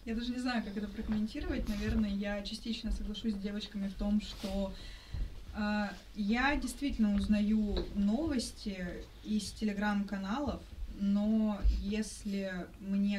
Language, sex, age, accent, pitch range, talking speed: Russian, female, 20-39, native, 195-225 Hz, 120 wpm